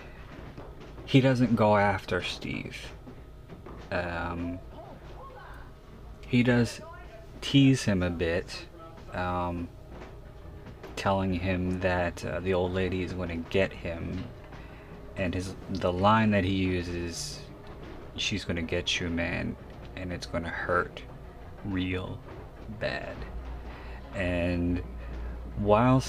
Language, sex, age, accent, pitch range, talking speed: English, male, 30-49, American, 65-105 Hz, 100 wpm